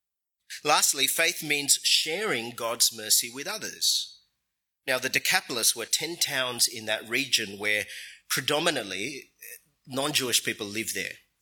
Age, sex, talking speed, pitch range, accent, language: 30-49, male, 120 wpm, 110-155 Hz, Australian, English